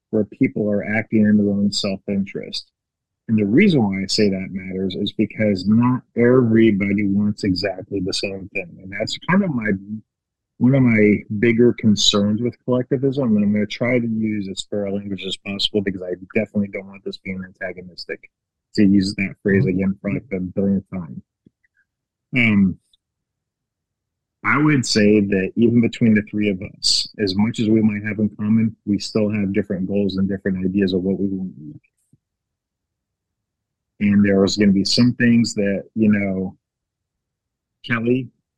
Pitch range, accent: 100-120 Hz, American